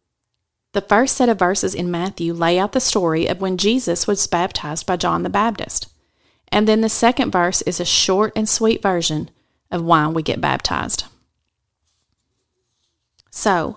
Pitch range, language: 175-225 Hz, English